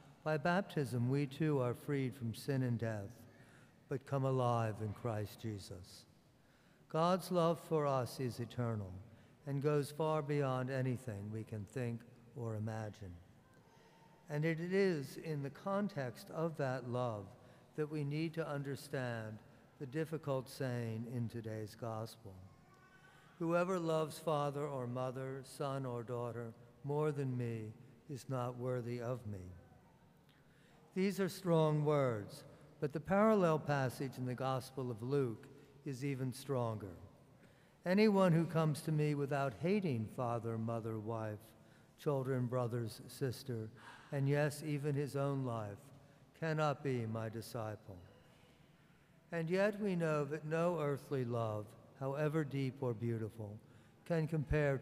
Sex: male